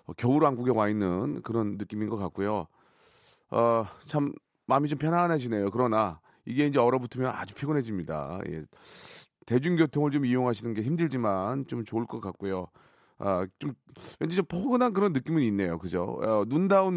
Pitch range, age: 105-150 Hz, 30-49